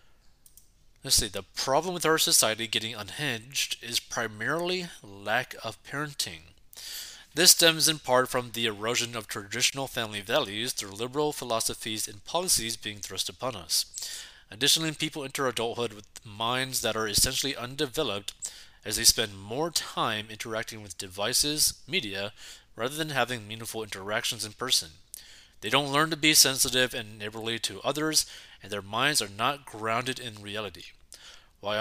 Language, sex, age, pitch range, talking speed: English, male, 20-39, 105-135 Hz, 150 wpm